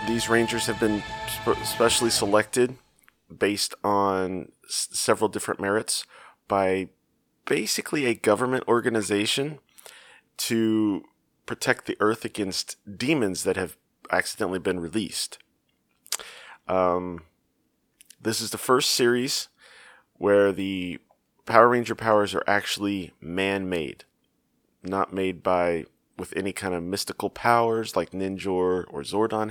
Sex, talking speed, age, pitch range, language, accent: male, 110 wpm, 30-49, 95-115 Hz, English, American